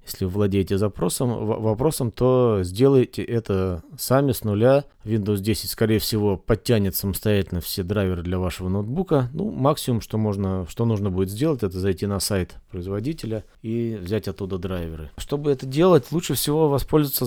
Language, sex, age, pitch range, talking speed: Russian, male, 30-49, 100-130 Hz, 155 wpm